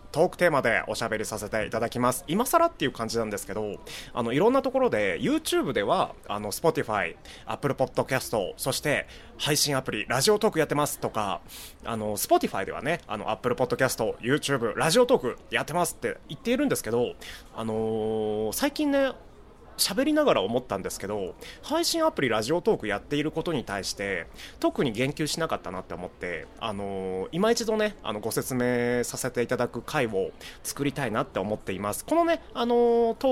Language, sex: Japanese, male